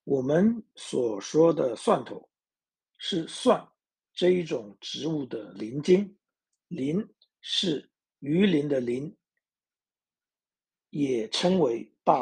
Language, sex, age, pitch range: Chinese, male, 60-79, 135-190 Hz